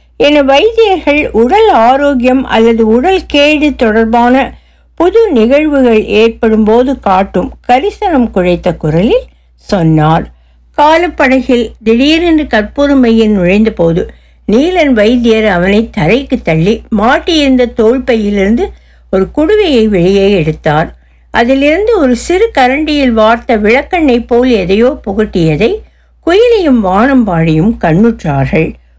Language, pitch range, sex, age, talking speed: Tamil, 195-270 Hz, female, 60-79, 95 wpm